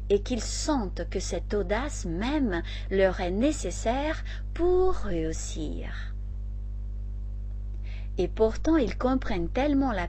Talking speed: 105 wpm